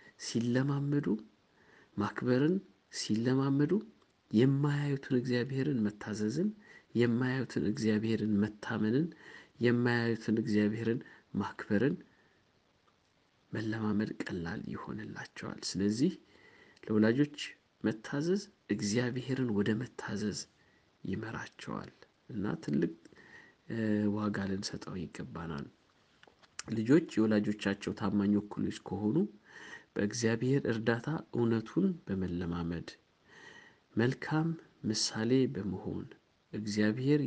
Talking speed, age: 65 wpm, 50-69